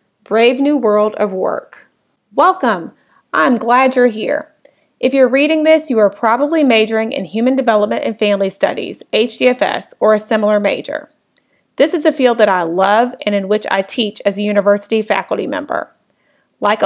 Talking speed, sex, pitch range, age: 165 wpm, female, 205-265 Hz, 30-49